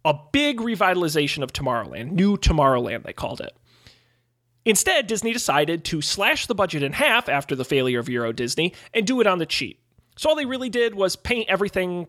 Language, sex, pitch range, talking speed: English, male, 140-190 Hz, 195 wpm